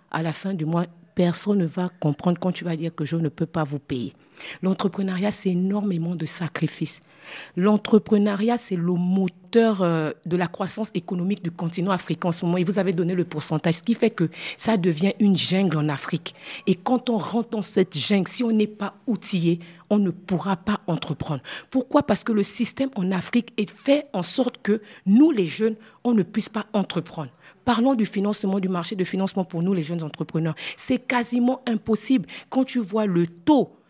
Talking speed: 200 wpm